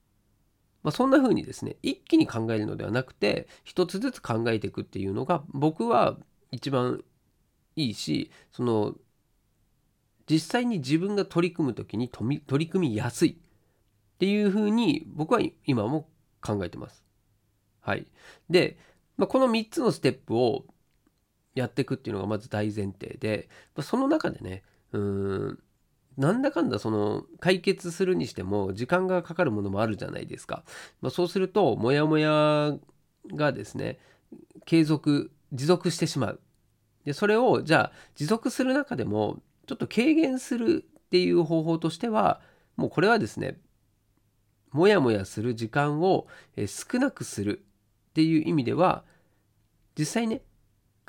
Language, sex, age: Japanese, male, 40-59